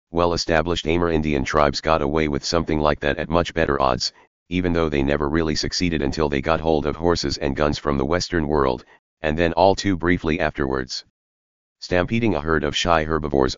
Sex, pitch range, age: male, 70-85 Hz, 40-59